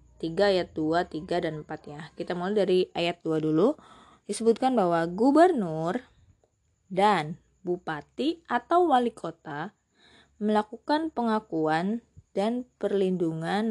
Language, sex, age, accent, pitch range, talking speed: Indonesian, female, 20-39, native, 175-215 Hz, 110 wpm